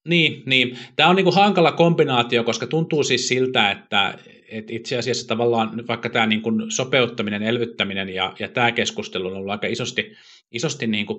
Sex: male